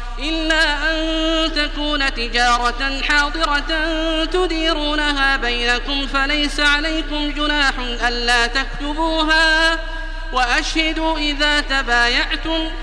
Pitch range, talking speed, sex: 215-285 Hz, 70 wpm, male